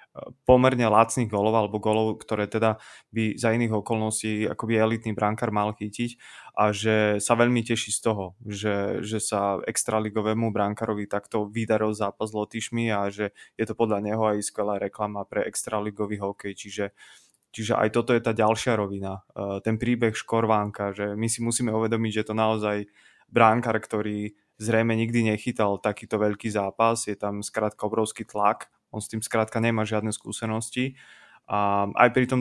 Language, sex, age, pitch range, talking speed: Slovak, male, 20-39, 105-115 Hz, 165 wpm